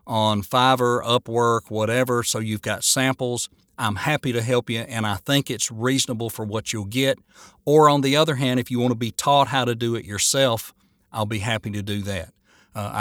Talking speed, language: 210 wpm, English